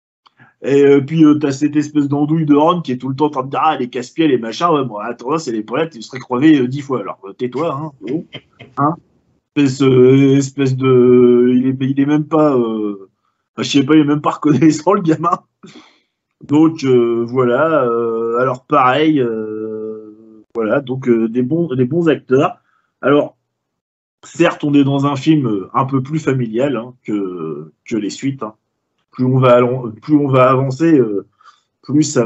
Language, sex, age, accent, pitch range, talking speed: French, male, 20-39, French, 120-145 Hz, 195 wpm